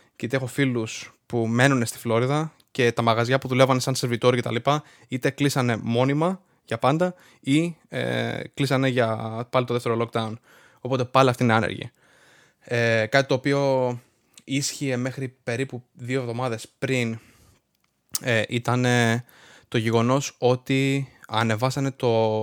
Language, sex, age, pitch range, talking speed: Greek, male, 20-39, 115-135 Hz, 125 wpm